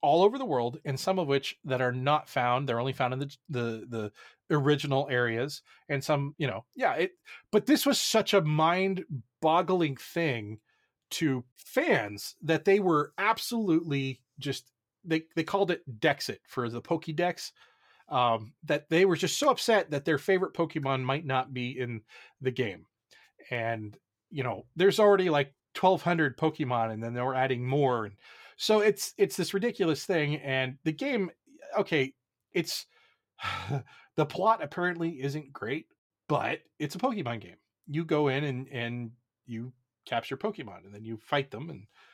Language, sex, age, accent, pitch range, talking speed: English, male, 30-49, American, 125-170 Hz, 165 wpm